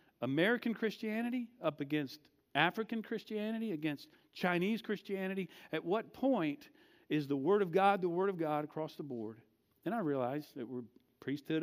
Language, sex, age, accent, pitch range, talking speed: English, male, 50-69, American, 150-205 Hz, 155 wpm